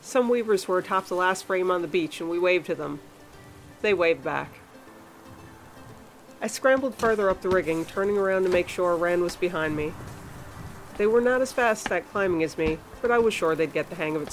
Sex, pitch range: female, 160-195 Hz